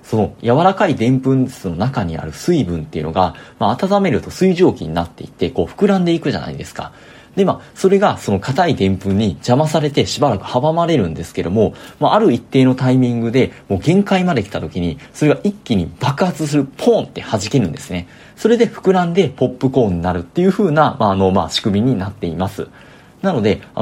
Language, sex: Japanese, male